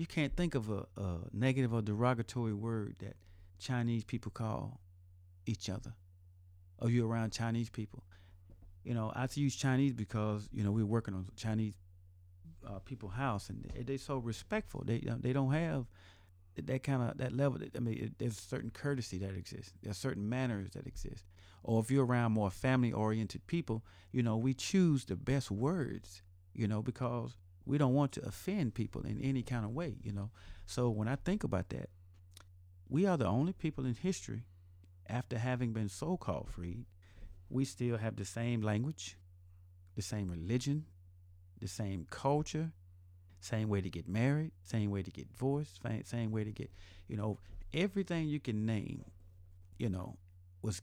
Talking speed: 175 wpm